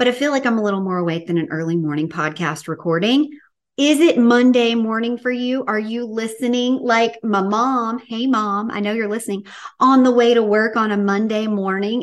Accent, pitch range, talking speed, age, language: American, 175-230 Hz, 210 wpm, 40-59, English